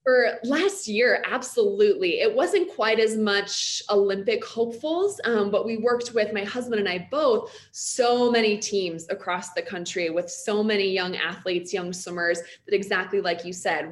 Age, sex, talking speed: 20-39, female, 170 wpm